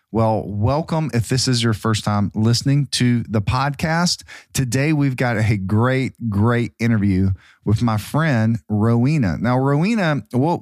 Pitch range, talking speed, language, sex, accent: 105-130 Hz, 145 wpm, English, male, American